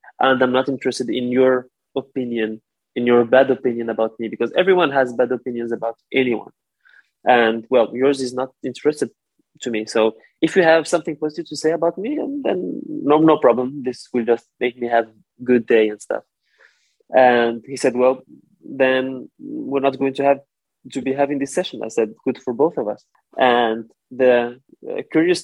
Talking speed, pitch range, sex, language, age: 185 wpm, 120-140 Hz, male, English, 20-39